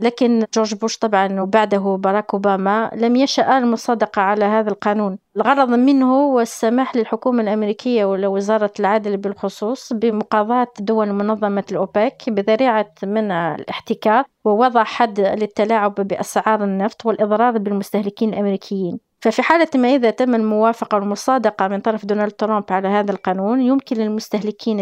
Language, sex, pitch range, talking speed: Arabic, female, 205-240 Hz, 130 wpm